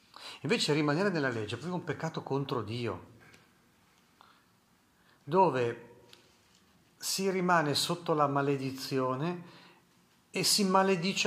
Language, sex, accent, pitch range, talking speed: Italian, male, native, 125-170 Hz, 100 wpm